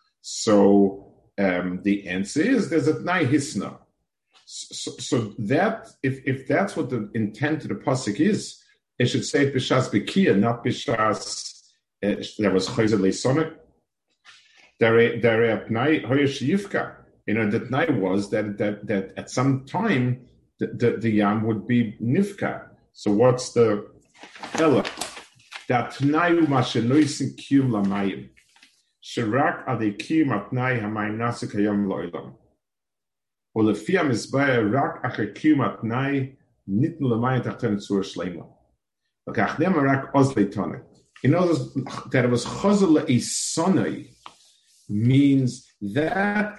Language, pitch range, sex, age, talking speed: English, 105-140 Hz, male, 50-69, 130 wpm